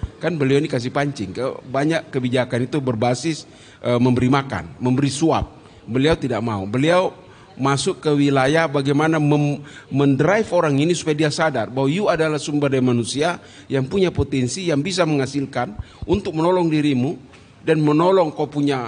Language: Indonesian